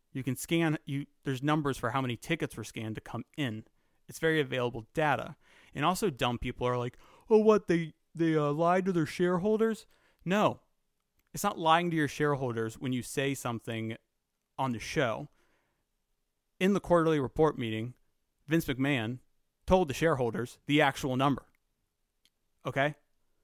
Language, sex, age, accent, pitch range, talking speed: English, male, 30-49, American, 115-155 Hz, 160 wpm